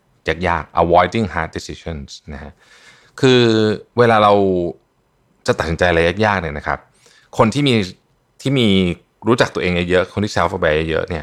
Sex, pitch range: male, 85-115 Hz